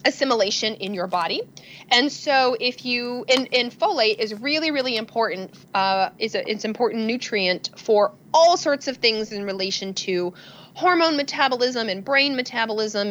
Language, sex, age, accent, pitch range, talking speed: English, female, 30-49, American, 195-255 Hz, 155 wpm